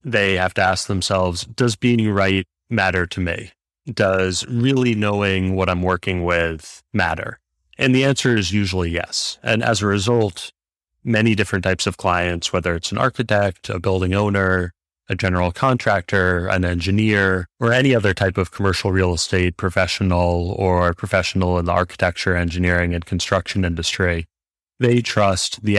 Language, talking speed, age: English, 155 wpm, 30-49